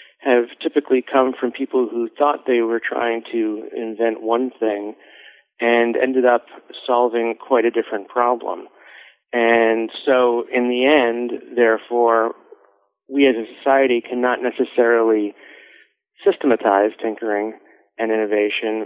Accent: American